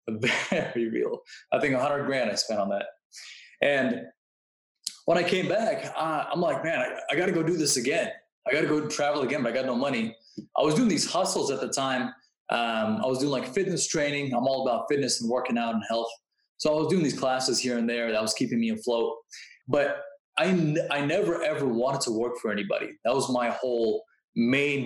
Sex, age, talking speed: male, 20-39, 215 wpm